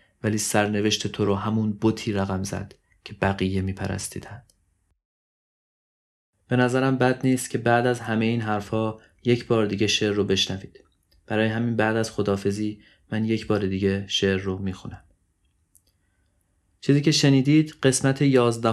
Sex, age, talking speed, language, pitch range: male, 30-49, 145 wpm, Persian, 95-110 Hz